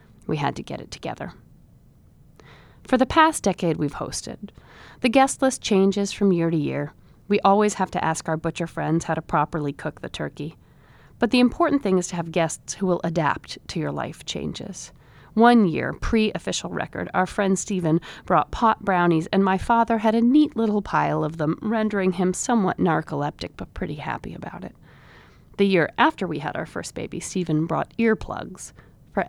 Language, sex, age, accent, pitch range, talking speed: English, female, 40-59, American, 160-215 Hz, 185 wpm